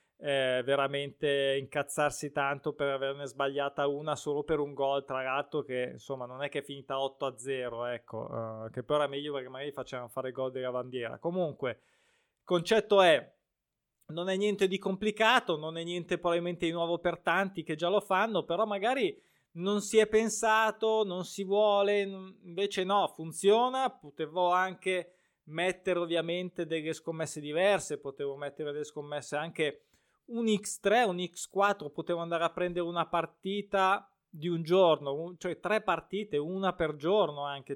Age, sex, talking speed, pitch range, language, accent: 20-39, male, 165 wpm, 140-185 Hz, Italian, native